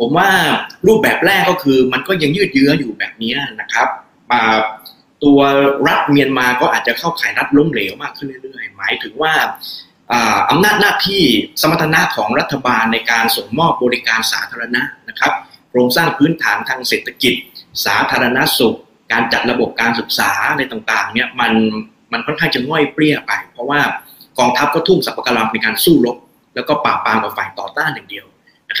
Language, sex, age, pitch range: Thai, male, 20-39, 115-155 Hz